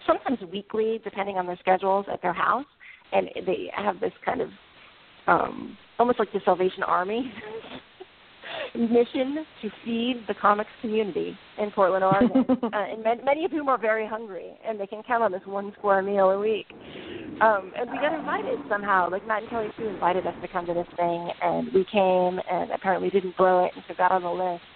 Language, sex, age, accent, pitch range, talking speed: English, female, 40-59, American, 185-235 Hz, 195 wpm